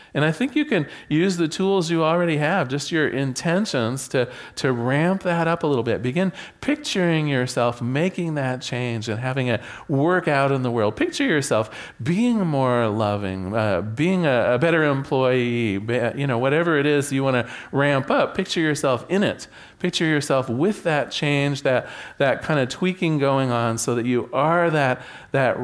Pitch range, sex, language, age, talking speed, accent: 125-180 Hz, male, English, 40-59, 185 wpm, American